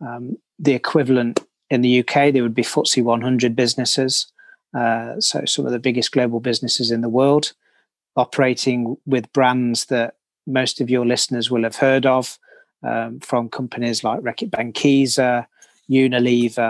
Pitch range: 120-145 Hz